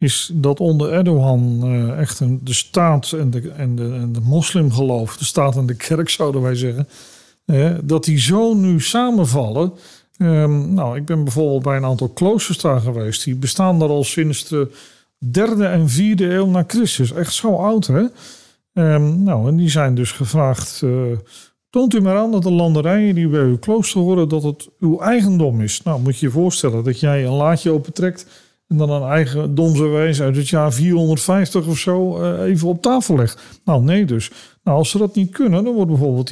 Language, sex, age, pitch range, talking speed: Dutch, male, 40-59, 125-175 Hz, 185 wpm